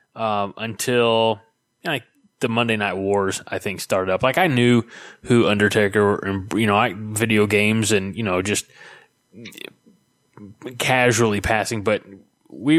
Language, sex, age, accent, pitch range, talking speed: English, male, 20-39, American, 105-125 Hz, 140 wpm